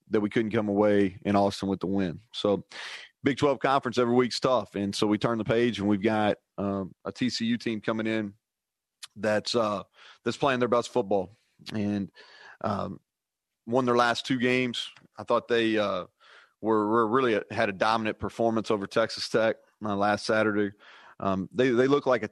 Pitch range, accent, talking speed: 105-120 Hz, American, 190 wpm